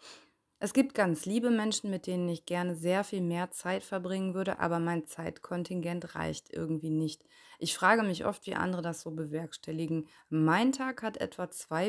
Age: 20-39